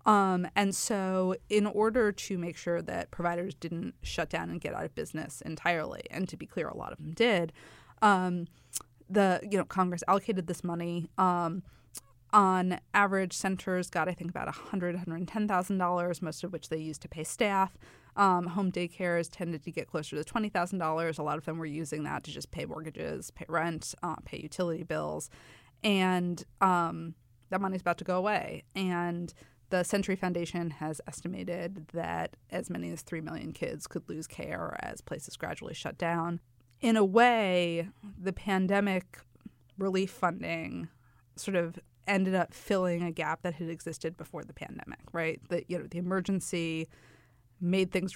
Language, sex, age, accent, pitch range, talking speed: English, female, 20-39, American, 160-190 Hz, 175 wpm